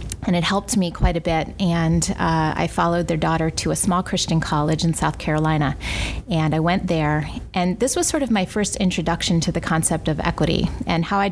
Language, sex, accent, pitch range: English, female, American, 160-185 Hz